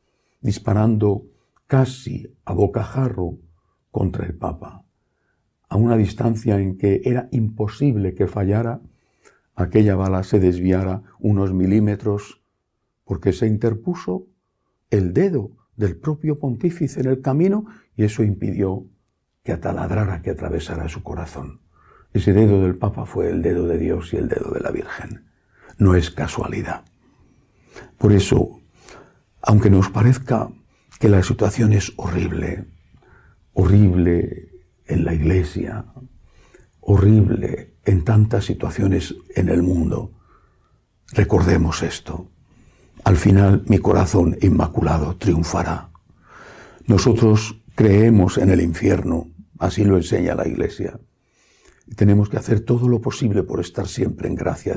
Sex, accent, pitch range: male, Spanish, 90-115 Hz